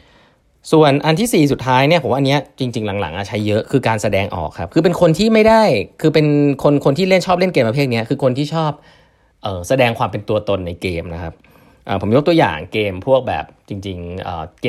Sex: male